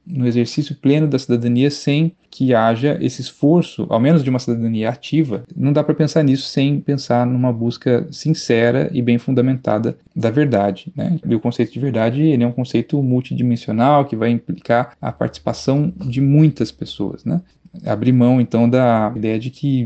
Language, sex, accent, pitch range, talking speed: Portuguese, male, Brazilian, 120-145 Hz, 175 wpm